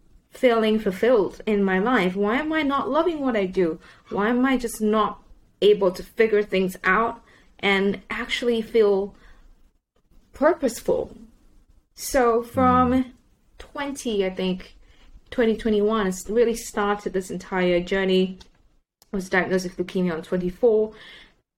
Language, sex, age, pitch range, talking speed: English, female, 20-39, 185-235 Hz, 130 wpm